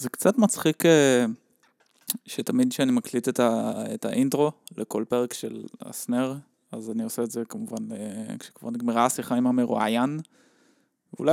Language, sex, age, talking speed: Hebrew, male, 20-39, 150 wpm